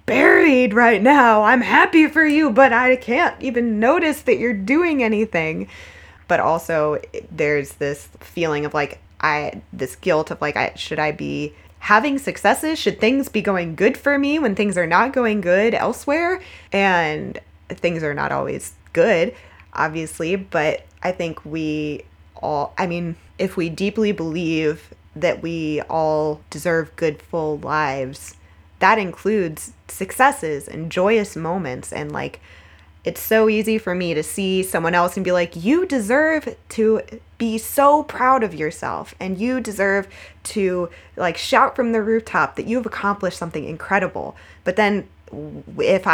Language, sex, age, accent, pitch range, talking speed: English, female, 20-39, American, 155-225 Hz, 155 wpm